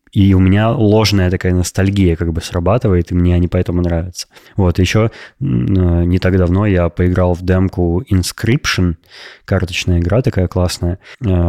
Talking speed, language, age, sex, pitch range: 145 wpm, Russian, 20-39, male, 90-110 Hz